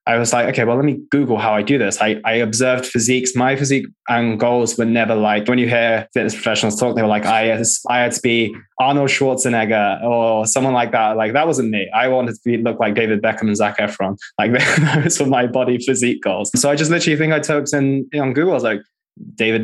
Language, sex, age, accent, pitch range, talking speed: English, male, 20-39, British, 110-130 Hz, 240 wpm